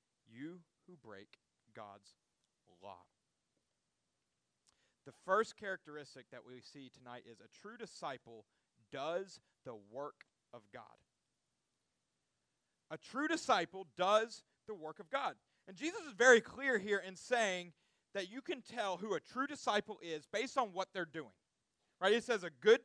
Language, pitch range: English, 160-225 Hz